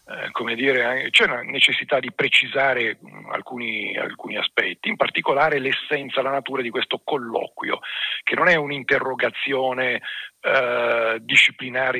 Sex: male